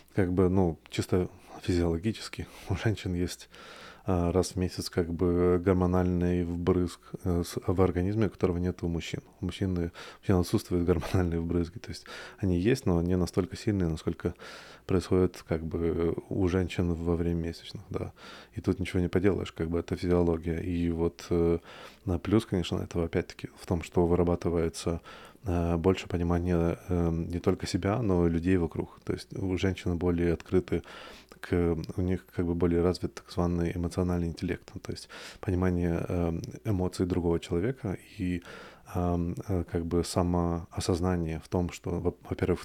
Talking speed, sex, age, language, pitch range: 150 wpm, male, 20-39, Russian, 85-95 Hz